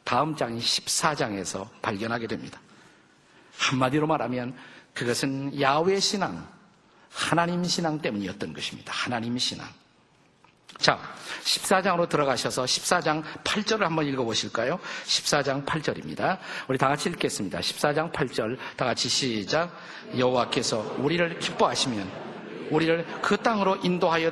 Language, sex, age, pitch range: Korean, male, 50-69, 130-195 Hz